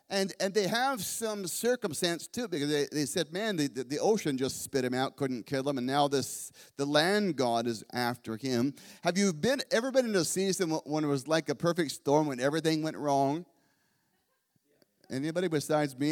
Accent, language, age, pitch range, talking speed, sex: American, English, 40-59, 140-175 Hz, 195 wpm, male